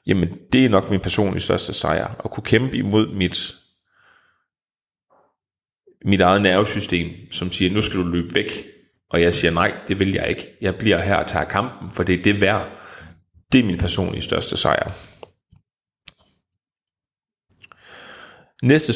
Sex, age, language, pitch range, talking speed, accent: male, 30-49, Danish, 90-105 Hz, 155 wpm, native